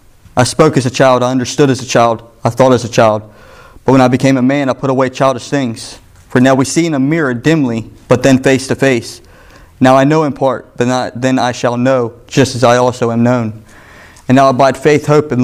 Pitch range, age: 115-130 Hz, 20-39